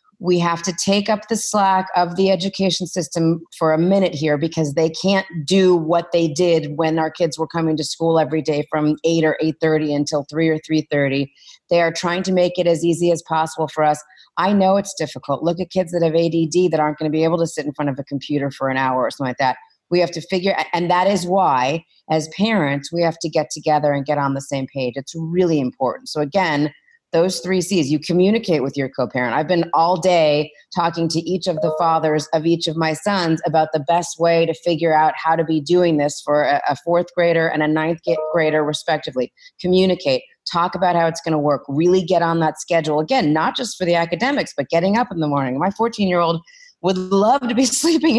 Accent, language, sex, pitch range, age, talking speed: American, English, female, 155-180 Hz, 30-49, 230 wpm